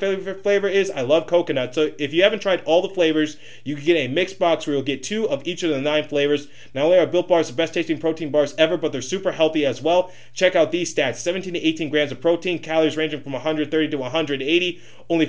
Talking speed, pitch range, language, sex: 250 wpm, 140-170 Hz, English, male